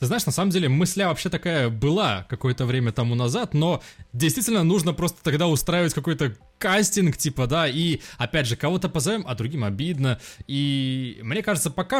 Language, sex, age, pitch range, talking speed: Russian, male, 20-39, 115-175 Hz, 175 wpm